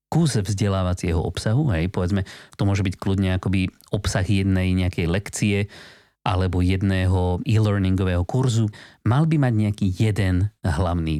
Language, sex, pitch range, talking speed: Slovak, male, 95-125 Hz, 130 wpm